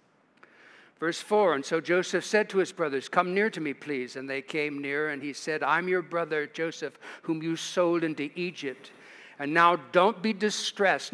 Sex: male